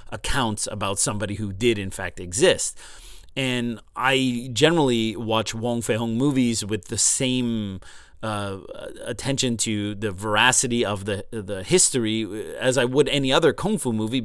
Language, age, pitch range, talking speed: English, 30-49, 105-125 Hz, 150 wpm